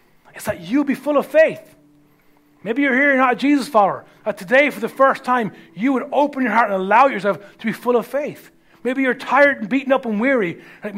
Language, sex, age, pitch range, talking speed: English, male, 30-49, 170-265 Hz, 235 wpm